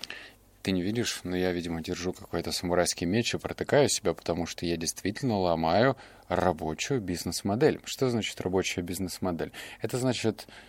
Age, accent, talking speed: 20-39, native, 145 wpm